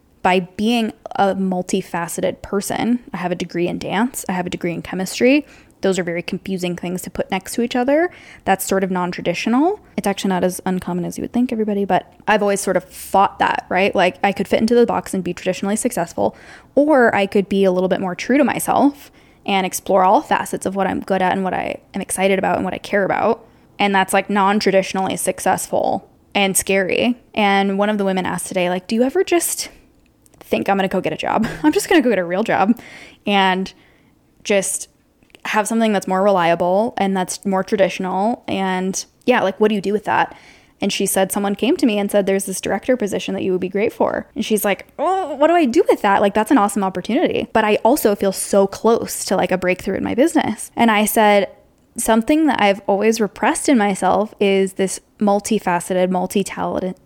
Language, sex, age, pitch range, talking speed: English, female, 10-29, 190-230 Hz, 220 wpm